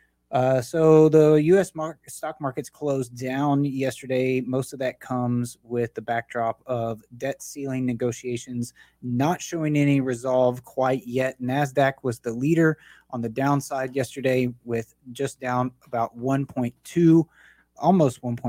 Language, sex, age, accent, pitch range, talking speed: English, male, 30-49, American, 125-145 Hz, 135 wpm